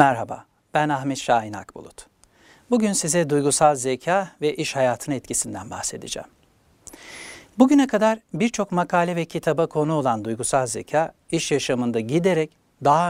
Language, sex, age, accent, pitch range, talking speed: Turkish, male, 60-79, native, 140-185 Hz, 130 wpm